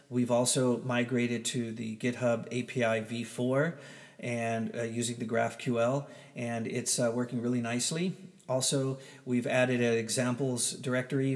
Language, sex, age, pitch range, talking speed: English, male, 40-59, 120-135 Hz, 130 wpm